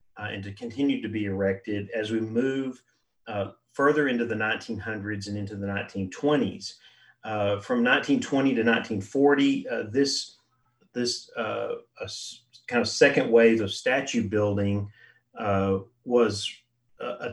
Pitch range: 105-120 Hz